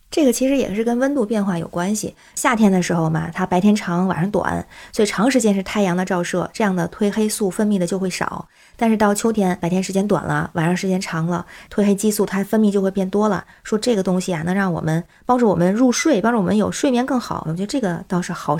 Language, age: Chinese, 20-39